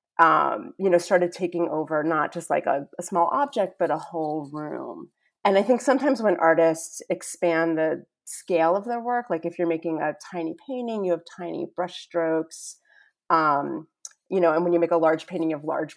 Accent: American